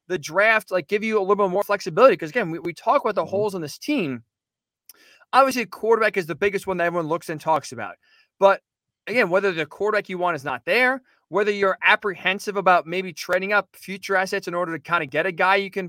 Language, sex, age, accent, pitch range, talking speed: English, male, 20-39, American, 170-205 Hz, 240 wpm